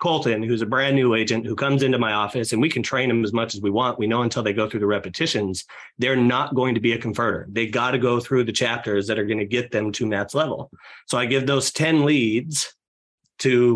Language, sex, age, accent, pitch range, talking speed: English, male, 30-49, American, 115-135 Hz, 255 wpm